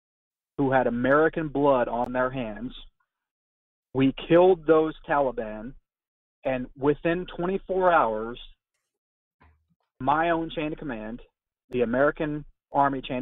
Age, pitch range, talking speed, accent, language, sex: 40-59, 120-150 Hz, 110 wpm, American, English, male